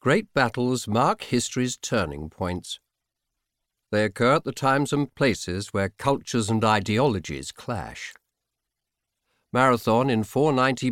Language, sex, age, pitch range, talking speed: English, male, 50-69, 110-140 Hz, 115 wpm